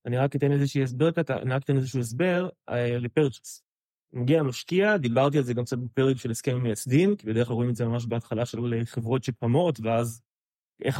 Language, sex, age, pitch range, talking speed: Hebrew, male, 20-39, 125-160 Hz, 195 wpm